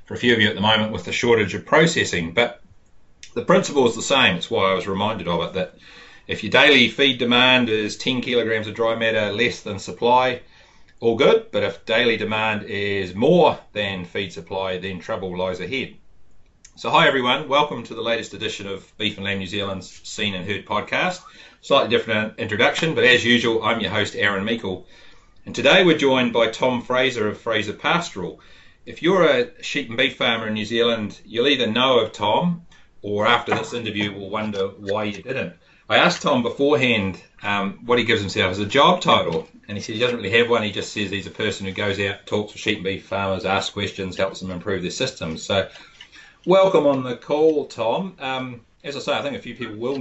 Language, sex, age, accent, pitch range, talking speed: English, male, 30-49, Australian, 100-120 Hz, 215 wpm